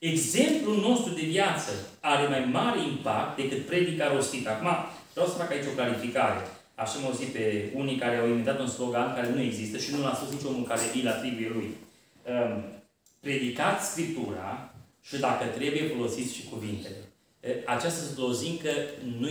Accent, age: native, 30-49